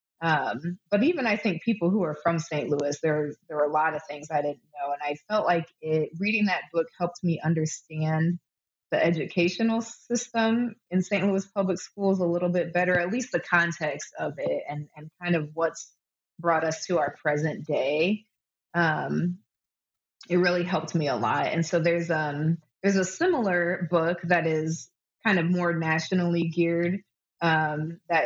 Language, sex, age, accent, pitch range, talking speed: English, female, 20-39, American, 160-185 Hz, 180 wpm